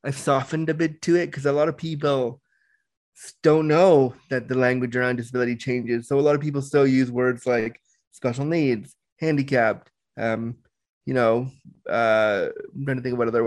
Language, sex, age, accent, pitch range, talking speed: English, male, 20-39, American, 125-155 Hz, 185 wpm